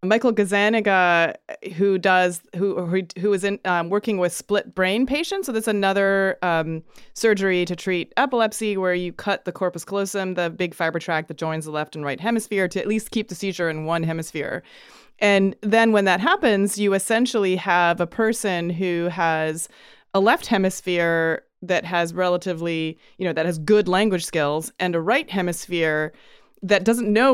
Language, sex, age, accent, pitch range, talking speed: English, female, 30-49, American, 170-210 Hz, 170 wpm